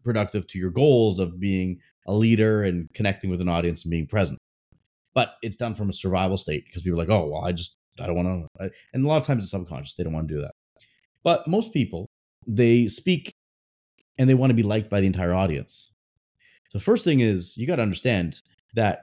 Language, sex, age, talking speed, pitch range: English, male, 30-49, 225 wpm, 90-120 Hz